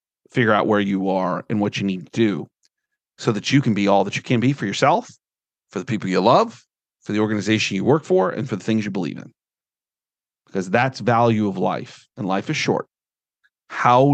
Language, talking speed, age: English, 215 wpm, 40-59